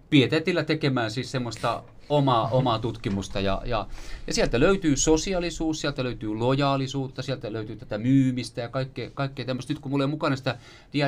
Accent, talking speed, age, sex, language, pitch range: native, 175 wpm, 30-49, male, Finnish, 120-155 Hz